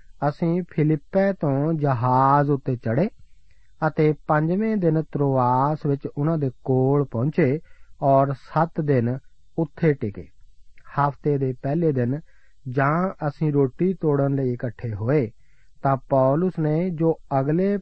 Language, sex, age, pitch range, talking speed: Punjabi, male, 40-59, 125-160 Hz, 120 wpm